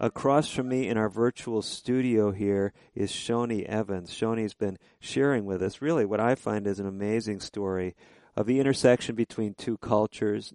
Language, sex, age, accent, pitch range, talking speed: English, male, 50-69, American, 100-115 Hz, 170 wpm